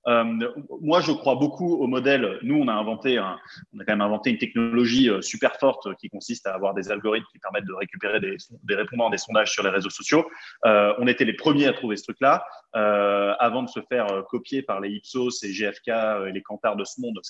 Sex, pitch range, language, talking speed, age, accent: male, 110-150 Hz, French, 230 wpm, 20-39, French